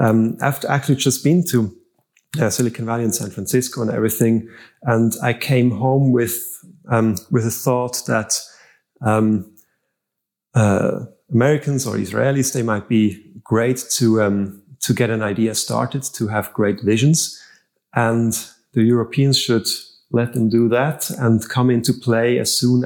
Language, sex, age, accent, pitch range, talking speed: English, male, 30-49, German, 110-130 Hz, 150 wpm